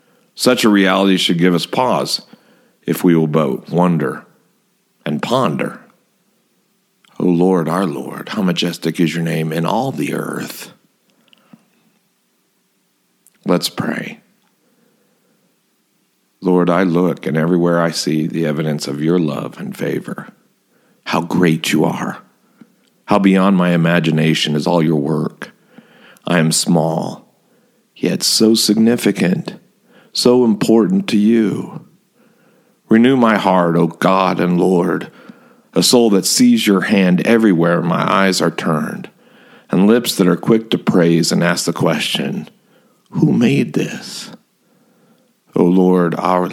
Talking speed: 130 wpm